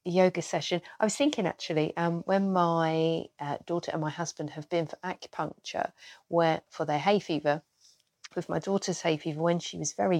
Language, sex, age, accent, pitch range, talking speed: English, female, 40-59, British, 155-195 Hz, 190 wpm